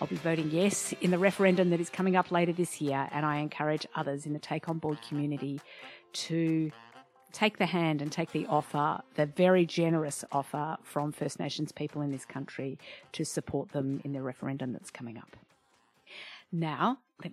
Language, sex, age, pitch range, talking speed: English, female, 50-69, 150-190 Hz, 185 wpm